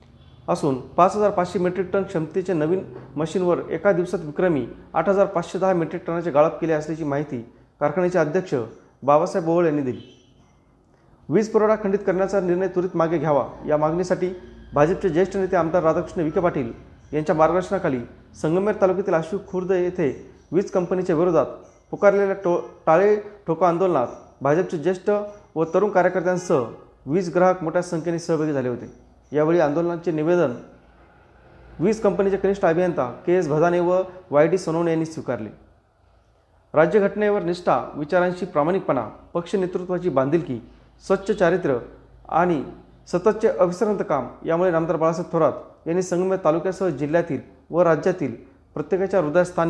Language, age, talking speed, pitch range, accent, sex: Marathi, 30-49, 135 wpm, 150-190 Hz, native, male